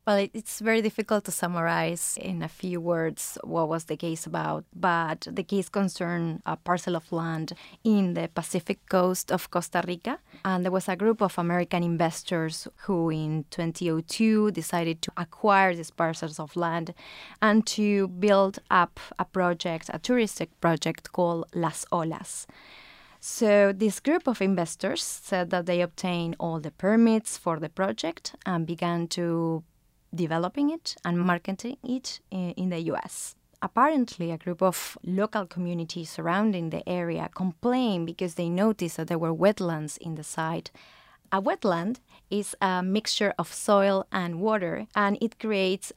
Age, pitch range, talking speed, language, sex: 20-39, 170-205 Hz, 155 wpm, English, female